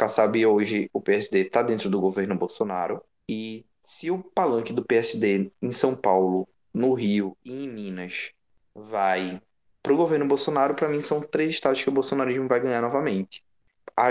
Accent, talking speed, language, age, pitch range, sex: Brazilian, 165 wpm, Portuguese, 20-39, 110-155 Hz, male